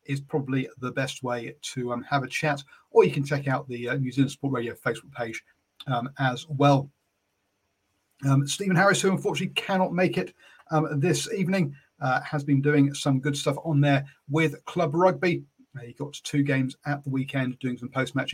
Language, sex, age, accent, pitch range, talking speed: English, male, 40-59, British, 130-155 Hz, 195 wpm